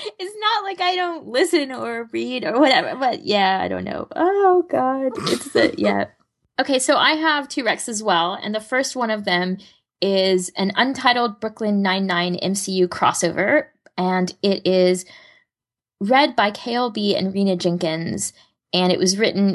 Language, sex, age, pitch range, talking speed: English, female, 20-39, 170-220 Hz, 165 wpm